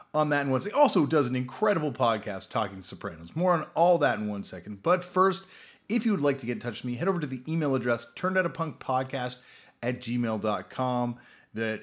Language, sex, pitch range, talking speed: English, male, 120-180 Hz, 200 wpm